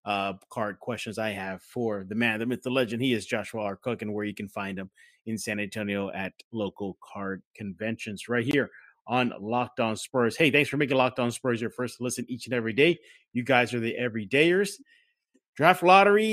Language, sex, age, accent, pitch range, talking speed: English, male, 30-49, American, 105-145 Hz, 210 wpm